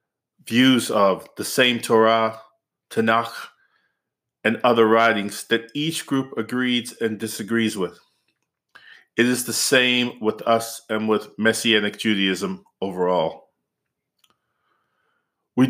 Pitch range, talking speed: 105-125 Hz, 105 wpm